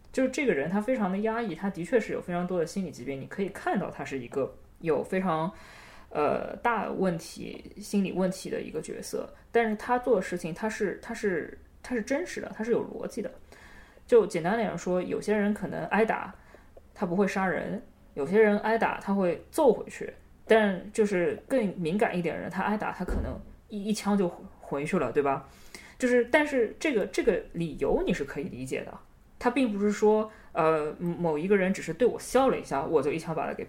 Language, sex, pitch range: Chinese, female, 170-225 Hz